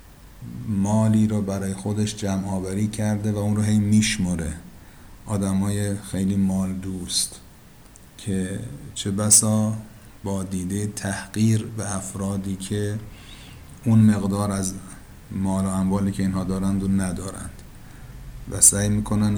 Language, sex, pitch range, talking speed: Persian, male, 95-110 Hz, 115 wpm